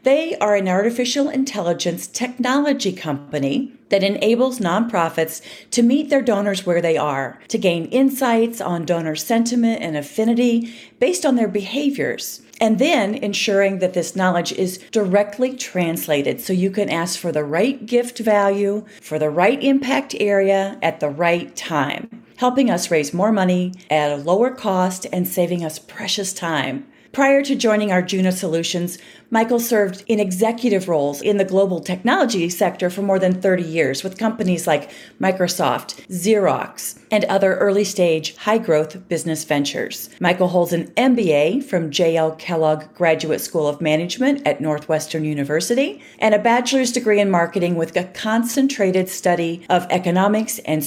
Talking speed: 150 wpm